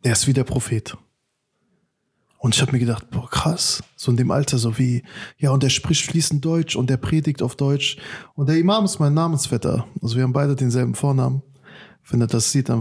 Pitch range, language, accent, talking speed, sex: 125-160 Hz, German, German, 215 wpm, male